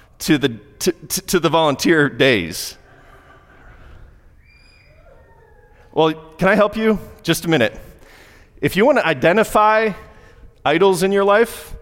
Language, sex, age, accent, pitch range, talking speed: English, male, 30-49, American, 95-135 Hz, 125 wpm